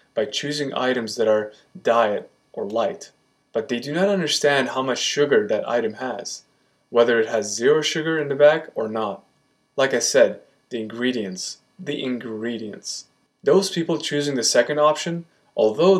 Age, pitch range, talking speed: 20-39, 120-155 Hz, 160 wpm